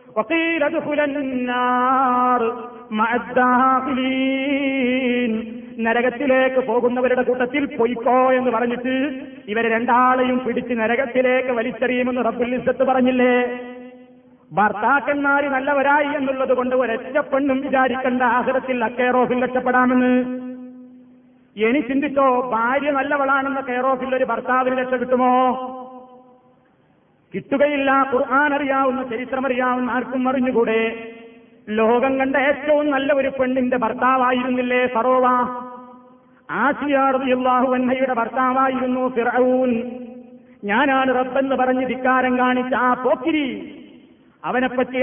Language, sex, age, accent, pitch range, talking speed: Malayalam, male, 30-49, native, 250-265 Hz, 70 wpm